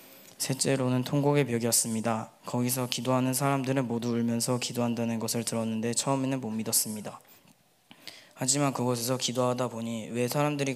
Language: Korean